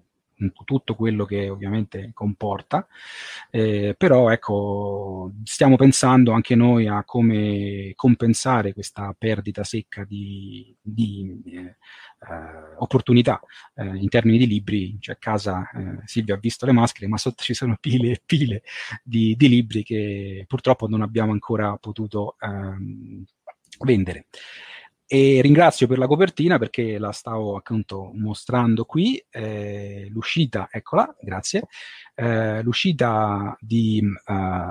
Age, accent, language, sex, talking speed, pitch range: 30-49, native, Italian, male, 125 wpm, 100-125 Hz